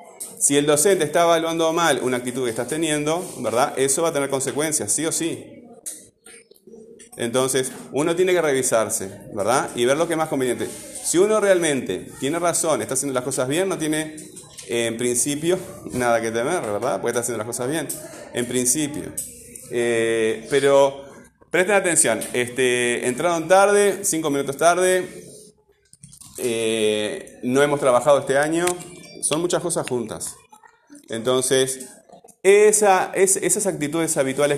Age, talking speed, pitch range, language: 30-49, 150 wpm, 125-185 Hz, Spanish